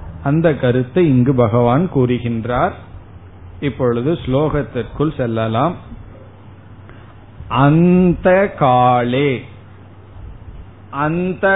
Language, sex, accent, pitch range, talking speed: Tamil, male, native, 110-145 Hz, 55 wpm